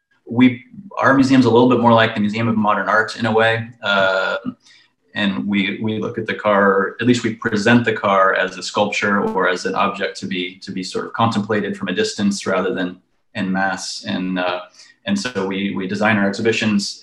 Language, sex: English, male